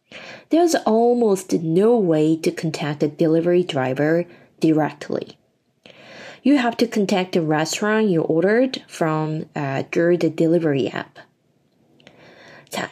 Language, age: Korean, 20-39